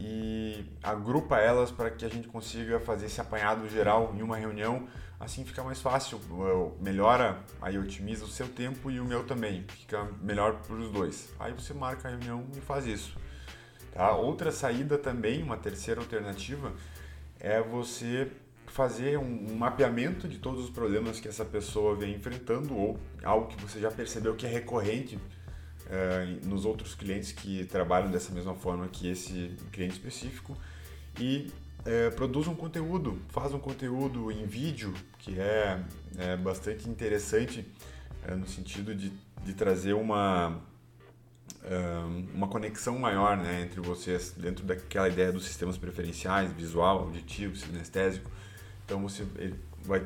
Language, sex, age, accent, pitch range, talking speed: Portuguese, male, 20-39, Brazilian, 90-115 Hz, 145 wpm